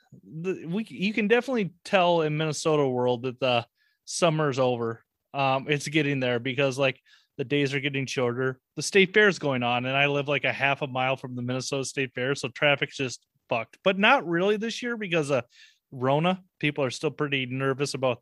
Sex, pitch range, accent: male, 125-160 Hz, American